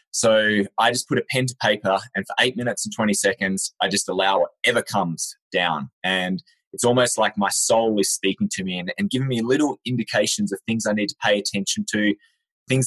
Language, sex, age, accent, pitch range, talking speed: English, male, 20-39, Australian, 100-125 Hz, 215 wpm